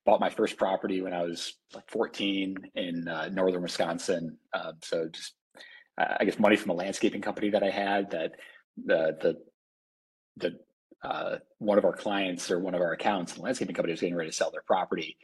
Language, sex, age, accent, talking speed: English, male, 30-49, American, 205 wpm